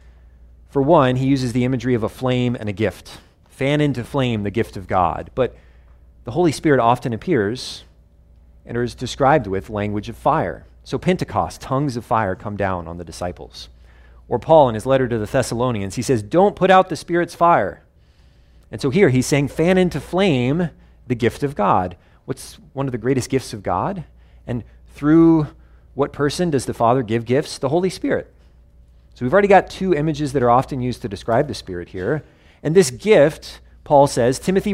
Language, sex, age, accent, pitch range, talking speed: English, male, 30-49, American, 100-140 Hz, 190 wpm